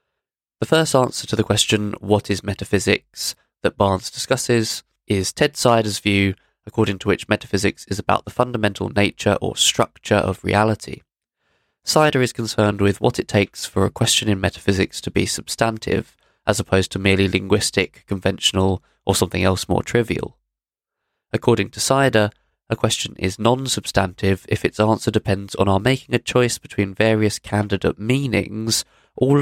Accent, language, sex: British, English, male